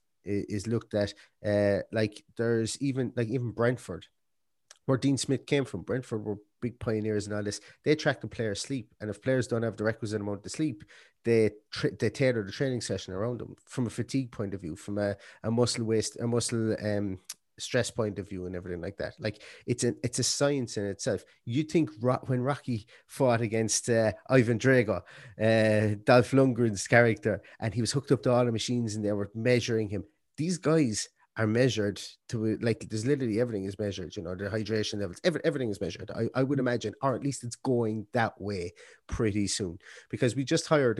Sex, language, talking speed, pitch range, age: male, English, 200 wpm, 105-125 Hz, 30-49